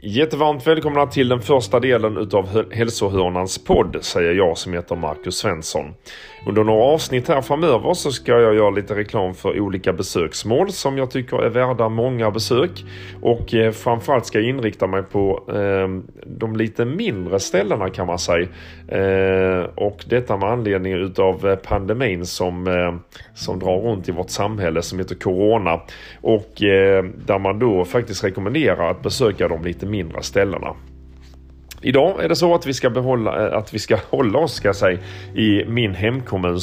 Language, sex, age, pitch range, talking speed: Swedish, male, 30-49, 90-120 Hz, 160 wpm